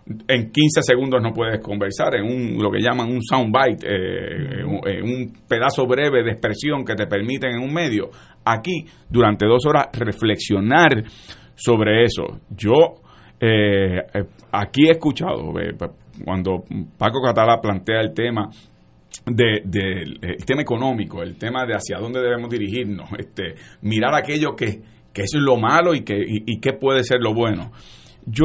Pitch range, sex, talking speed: 100-130 Hz, male, 165 wpm